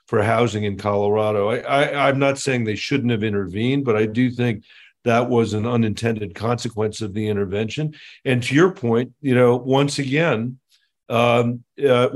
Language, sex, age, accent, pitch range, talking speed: English, male, 50-69, American, 110-135 Hz, 175 wpm